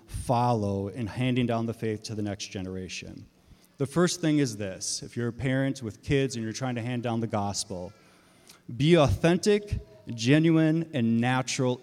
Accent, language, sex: American, English, male